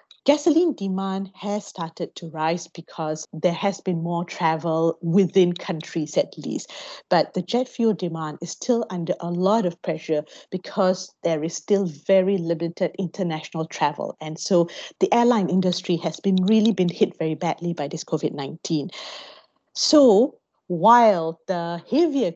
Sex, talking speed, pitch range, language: female, 150 wpm, 170-210 Hz, English